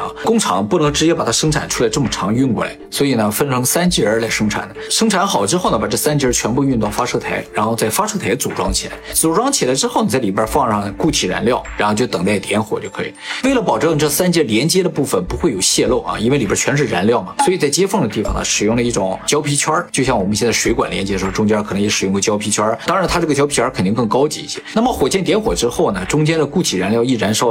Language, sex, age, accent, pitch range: Chinese, male, 20-39, native, 110-165 Hz